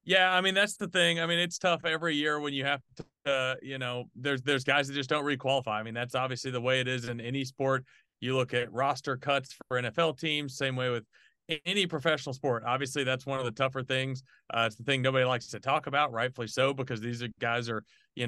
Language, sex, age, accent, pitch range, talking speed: English, male, 30-49, American, 125-145 Hz, 245 wpm